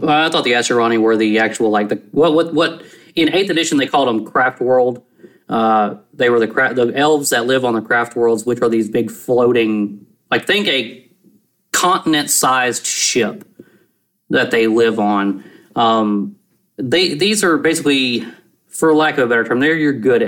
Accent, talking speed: American, 185 wpm